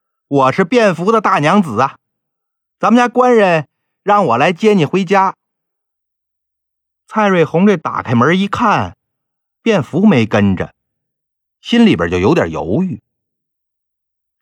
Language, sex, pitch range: Chinese, male, 125-215 Hz